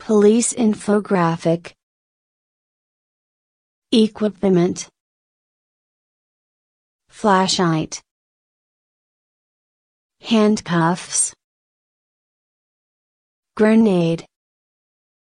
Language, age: English, 30-49